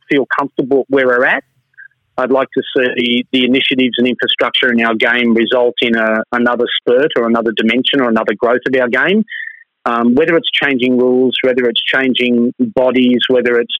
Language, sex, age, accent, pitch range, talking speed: English, male, 30-49, Australian, 115-130 Hz, 175 wpm